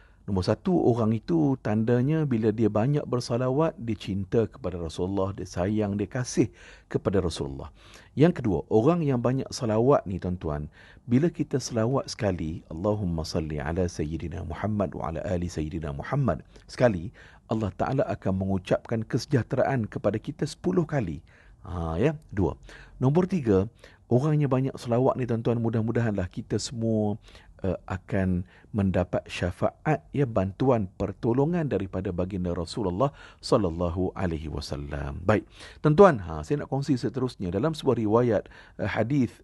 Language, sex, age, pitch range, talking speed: Malay, male, 50-69, 95-135 Hz, 135 wpm